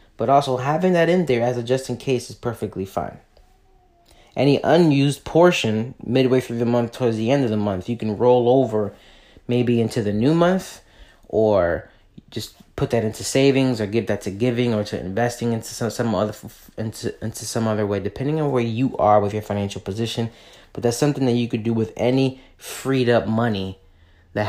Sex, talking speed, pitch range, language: male, 200 wpm, 105-130 Hz, English